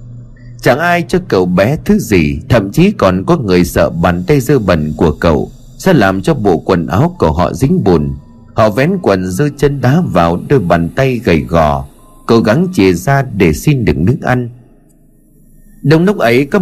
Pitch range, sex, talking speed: 95-145 Hz, male, 195 wpm